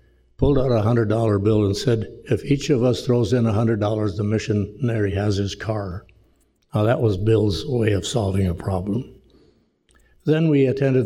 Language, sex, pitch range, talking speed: English, male, 100-120 Hz, 175 wpm